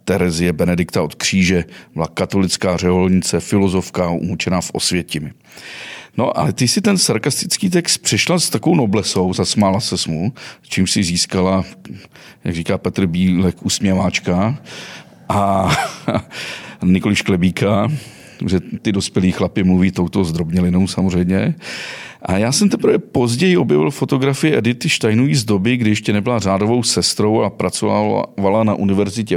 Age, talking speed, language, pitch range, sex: 40-59, 135 wpm, Czech, 95-120 Hz, male